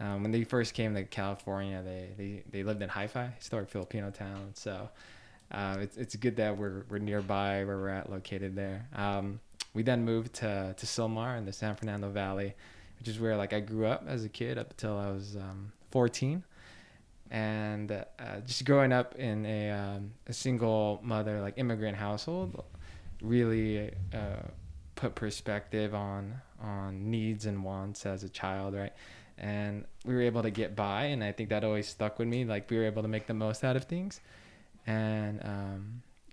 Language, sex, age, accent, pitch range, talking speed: English, male, 20-39, American, 100-120 Hz, 185 wpm